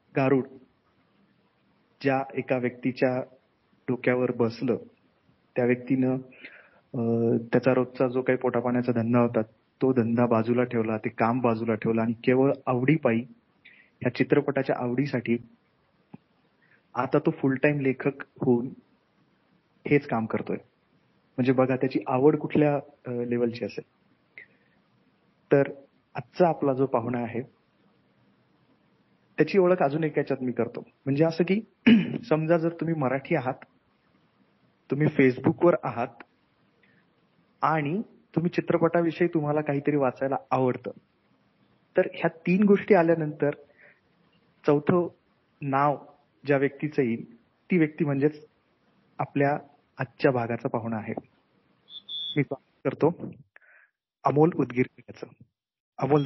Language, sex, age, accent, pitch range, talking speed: Marathi, male, 30-49, native, 125-150 Hz, 105 wpm